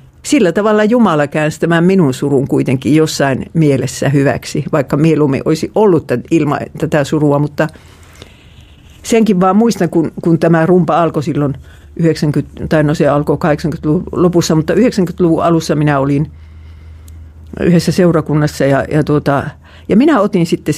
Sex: female